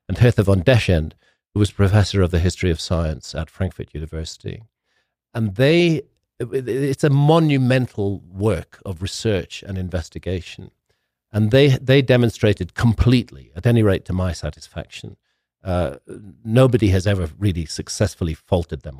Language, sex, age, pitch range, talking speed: English, male, 50-69, 85-120 Hz, 140 wpm